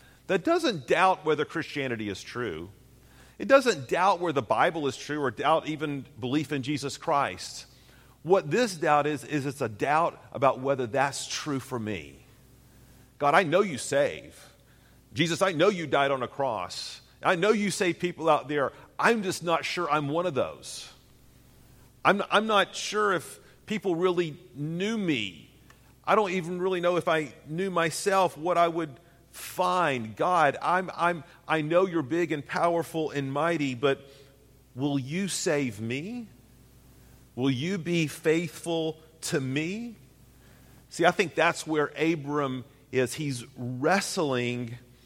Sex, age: male, 40-59